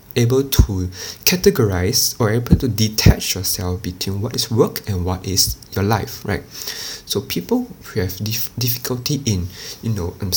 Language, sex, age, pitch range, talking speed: English, male, 20-39, 95-120 Hz, 160 wpm